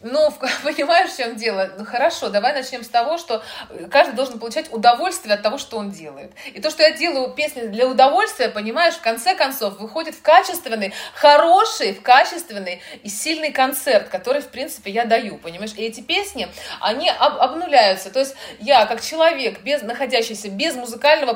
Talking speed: 170 wpm